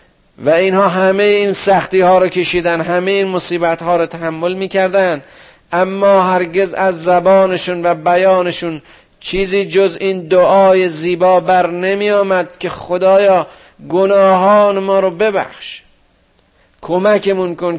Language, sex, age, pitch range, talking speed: Persian, male, 50-69, 135-185 Hz, 120 wpm